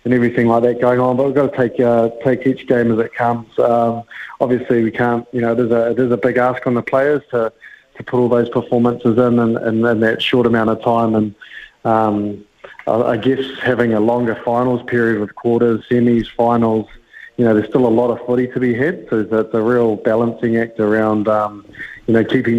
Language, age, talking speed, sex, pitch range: English, 20-39, 225 wpm, male, 110-120 Hz